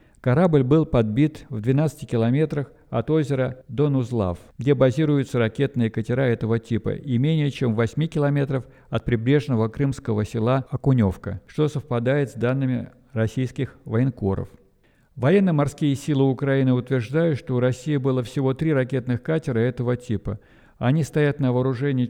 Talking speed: 135 wpm